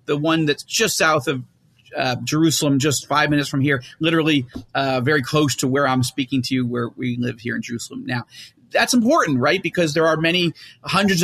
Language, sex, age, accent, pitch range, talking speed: English, male, 40-59, American, 135-175 Hz, 205 wpm